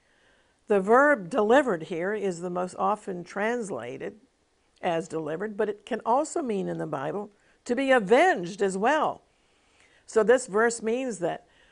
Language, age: English, 50-69